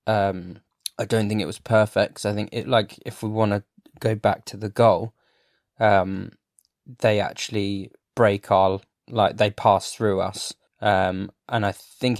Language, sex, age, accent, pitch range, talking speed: English, male, 20-39, British, 100-110 Hz, 170 wpm